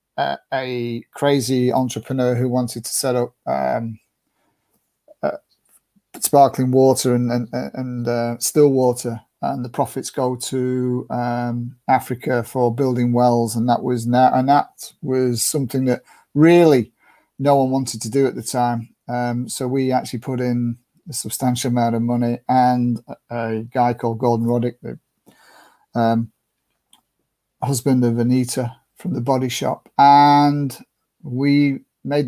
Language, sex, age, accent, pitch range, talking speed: English, male, 40-59, British, 120-135 Hz, 145 wpm